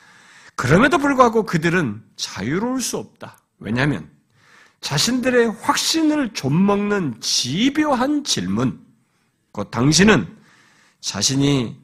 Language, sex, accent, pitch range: Korean, male, native, 155-260 Hz